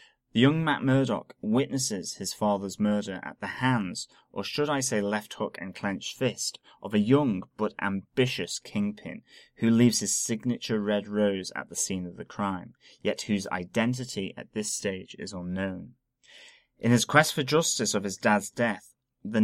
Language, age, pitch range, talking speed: English, 20-39, 100-125 Hz, 170 wpm